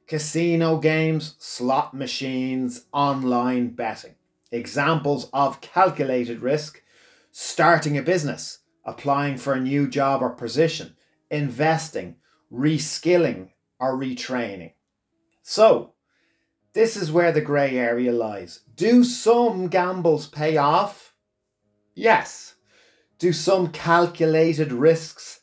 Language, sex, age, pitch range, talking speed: English, male, 30-49, 125-160 Hz, 100 wpm